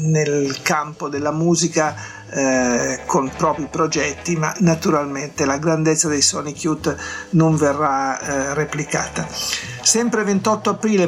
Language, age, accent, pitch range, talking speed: Italian, 50-69, native, 140-170 Hz, 120 wpm